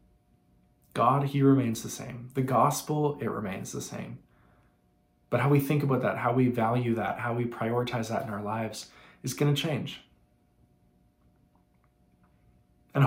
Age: 20-39